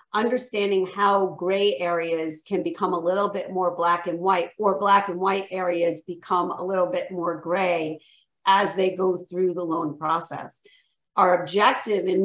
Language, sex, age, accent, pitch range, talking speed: English, female, 40-59, American, 175-205 Hz, 165 wpm